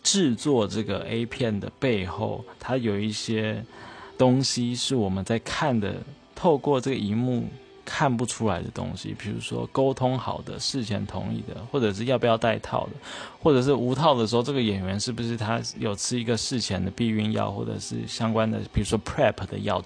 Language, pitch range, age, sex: Chinese, 100-125 Hz, 20-39, male